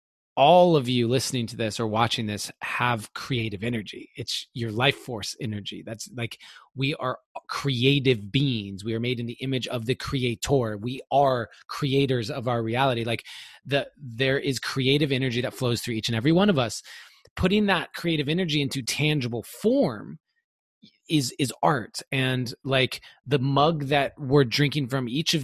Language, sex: English, male